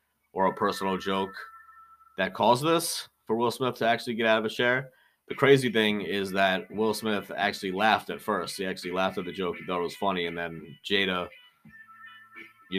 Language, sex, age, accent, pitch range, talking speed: English, male, 30-49, American, 95-120 Hz, 200 wpm